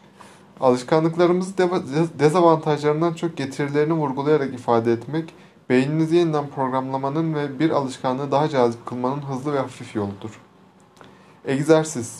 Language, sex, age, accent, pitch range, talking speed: Turkish, male, 30-49, native, 110-150 Hz, 105 wpm